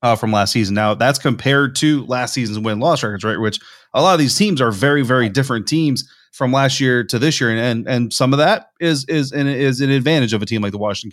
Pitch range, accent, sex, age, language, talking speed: 110-130 Hz, American, male, 30-49, English, 260 wpm